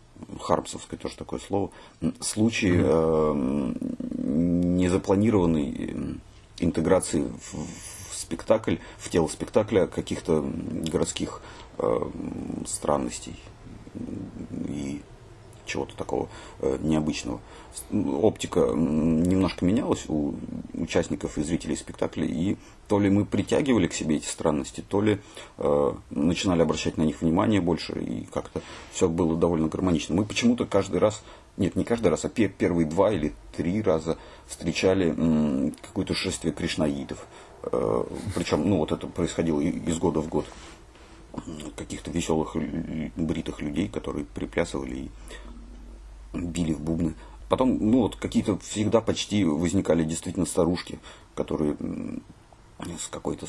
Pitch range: 80-100 Hz